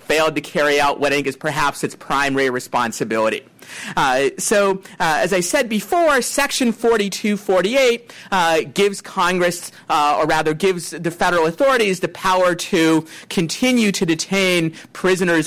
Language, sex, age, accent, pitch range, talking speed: English, male, 40-59, American, 145-185 Hz, 145 wpm